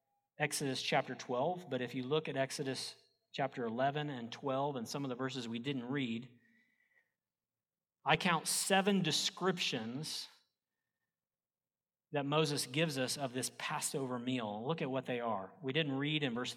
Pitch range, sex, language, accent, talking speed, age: 135-190 Hz, male, English, American, 155 wpm, 40-59